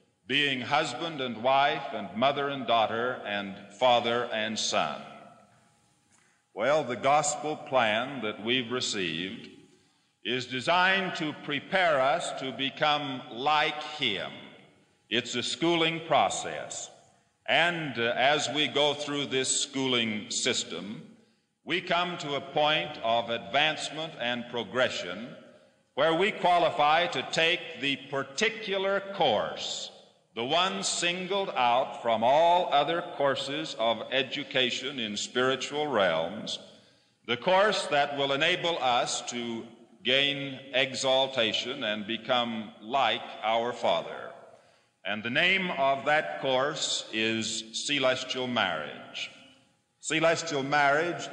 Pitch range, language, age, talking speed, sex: 120-155 Hz, English, 50-69, 115 wpm, male